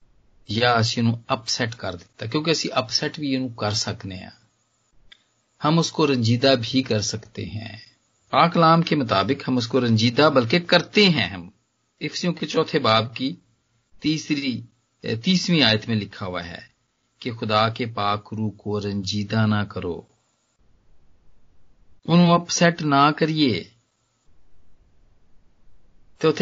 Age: 40-59